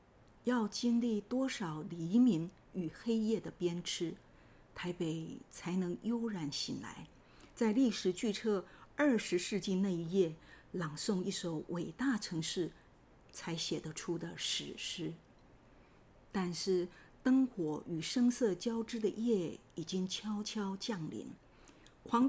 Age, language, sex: 50-69, Chinese, female